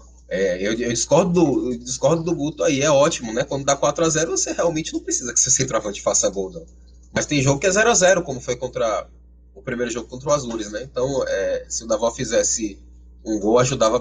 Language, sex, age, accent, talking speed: Portuguese, male, 20-39, Brazilian, 220 wpm